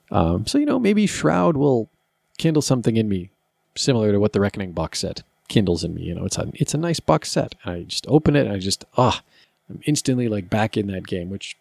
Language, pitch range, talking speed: English, 95-125 Hz, 245 wpm